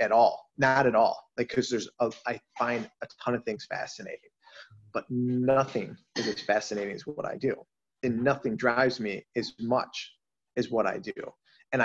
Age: 30-49